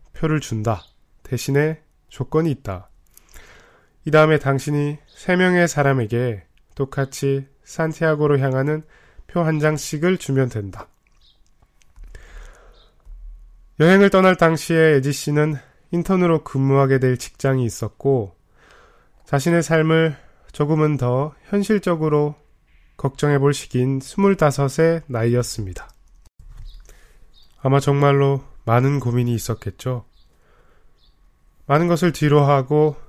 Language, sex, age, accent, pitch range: Korean, male, 20-39, native, 110-150 Hz